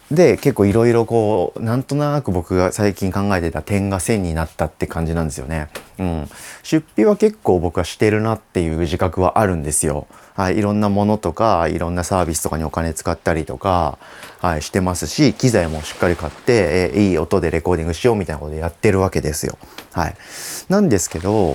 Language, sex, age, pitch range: Japanese, male, 30-49, 85-130 Hz